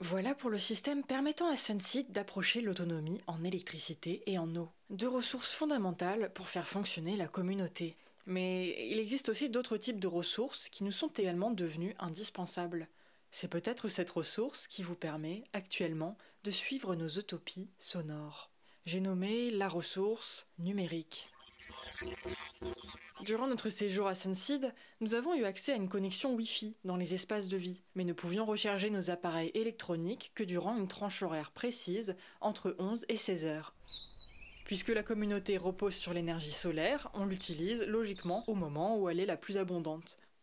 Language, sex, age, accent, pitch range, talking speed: French, female, 20-39, French, 175-220 Hz, 160 wpm